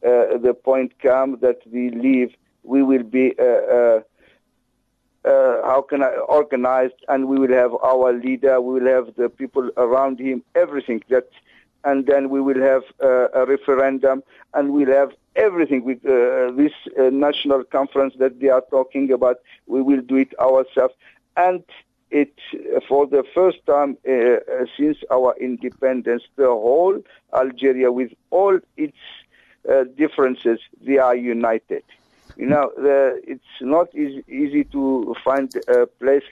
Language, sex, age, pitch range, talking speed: English, male, 50-69, 130-180 Hz, 150 wpm